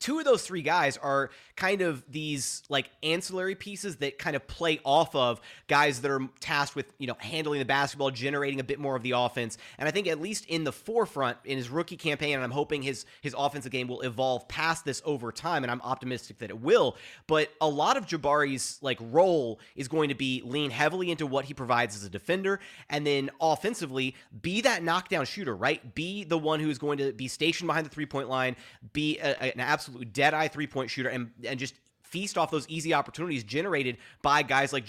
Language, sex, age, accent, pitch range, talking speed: English, male, 30-49, American, 130-155 Hz, 215 wpm